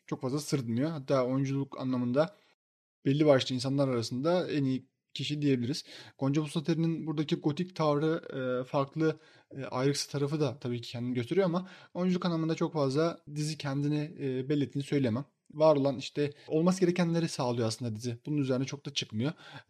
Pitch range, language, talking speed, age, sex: 130-155 Hz, Turkish, 150 wpm, 30-49, male